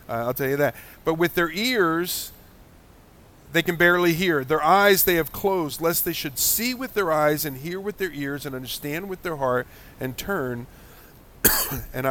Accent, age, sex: American, 50-69, male